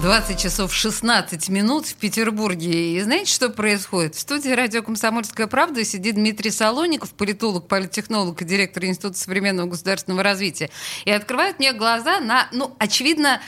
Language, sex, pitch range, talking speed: Russian, female, 195-285 Hz, 145 wpm